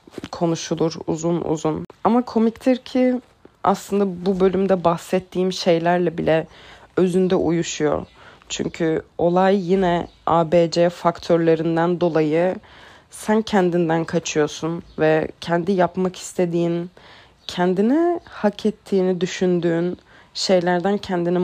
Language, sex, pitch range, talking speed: Turkish, female, 170-195 Hz, 90 wpm